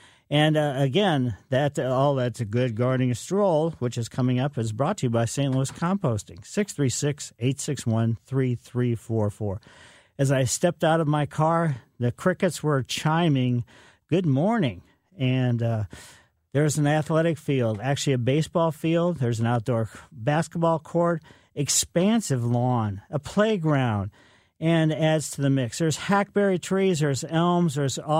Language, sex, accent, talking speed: English, male, American, 145 wpm